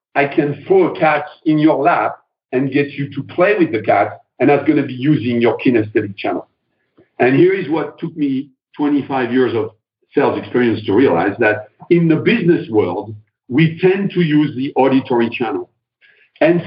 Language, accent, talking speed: English, French, 185 wpm